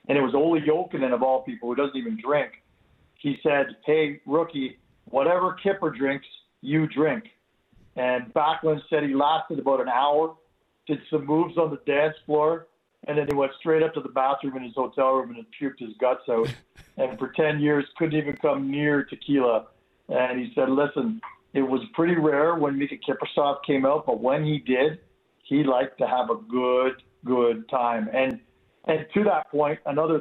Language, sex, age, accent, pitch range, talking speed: English, male, 50-69, American, 135-160 Hz, 185 wpm